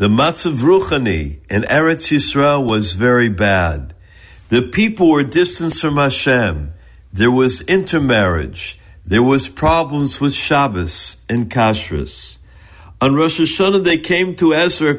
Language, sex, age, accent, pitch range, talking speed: English, male, 60-79, American, 100-165 Hz, 130 wpm